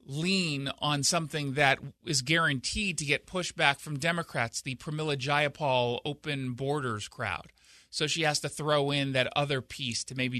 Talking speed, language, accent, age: 160 wpm, English, American, 30-49